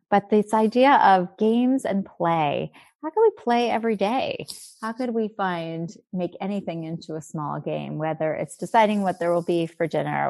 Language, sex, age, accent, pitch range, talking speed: English, female, 30-49, American, 165-200 Hz, 185 wpm